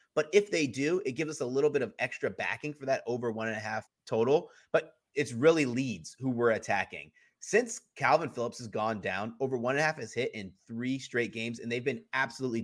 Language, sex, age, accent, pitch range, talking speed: English, male, 30-49, American, 115-155 Hz, 235 wpm